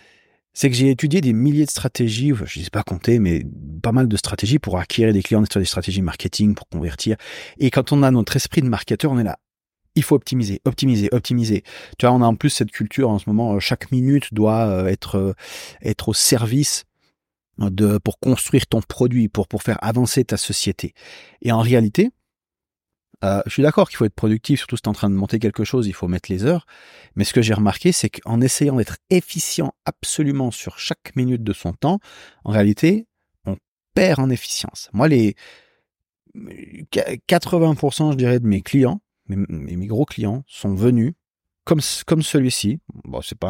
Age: 40-59